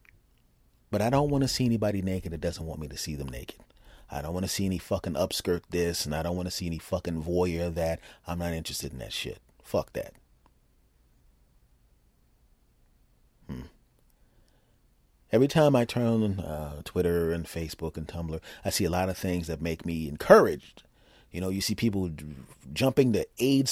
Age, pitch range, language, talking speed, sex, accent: 30-49, 80-110 Hz, English, 180 wpm, male, American